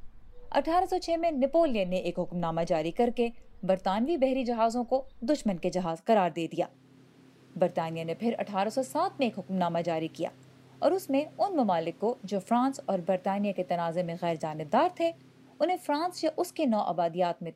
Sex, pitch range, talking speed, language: female, 175-260 Hz, 185 wpm, Urdu